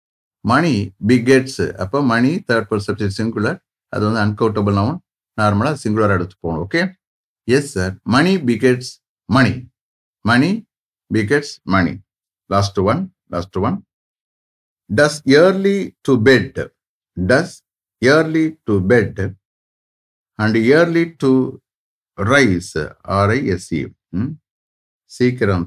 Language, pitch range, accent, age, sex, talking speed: English, 100-135 Hz, Indian, 50-69, male, 95 wpm